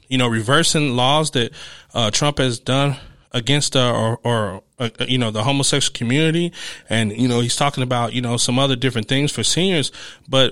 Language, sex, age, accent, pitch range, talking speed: English, male, 20-39, American, 120-155 Hz, 195 wpm